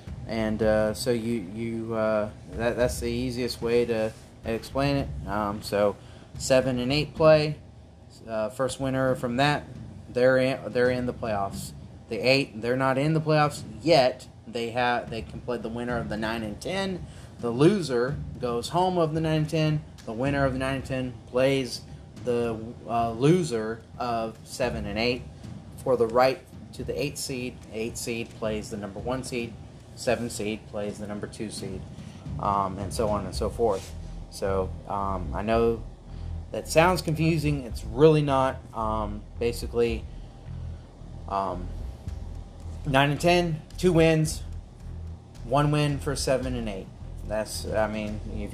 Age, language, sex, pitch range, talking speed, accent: 30-49, English, male, 105-130 Hz, 160 wpm, American